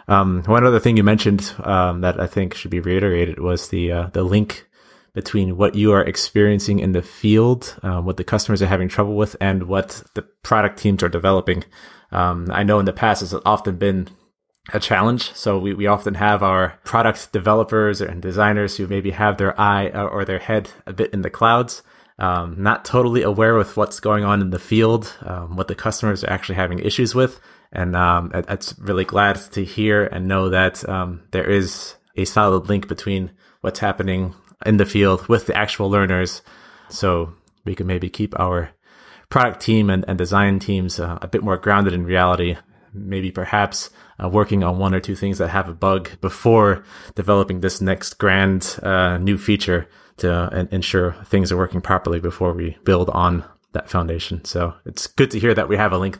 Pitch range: 90-105 Hz